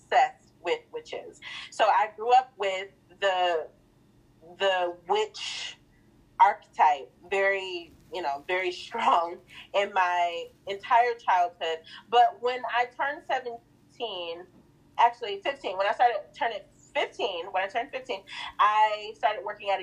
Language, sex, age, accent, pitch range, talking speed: English, female, 30-49, American, 175-240 Hz, 120 wpm